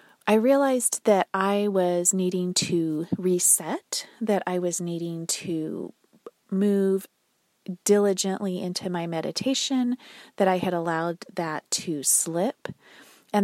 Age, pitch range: 30-49, 170-215 Hz